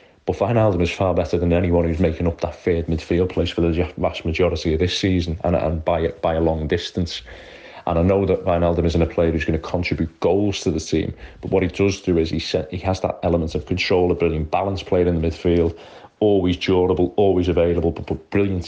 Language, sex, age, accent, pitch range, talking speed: English, male, 30-49, British, 80-95 Hz, 230 wpm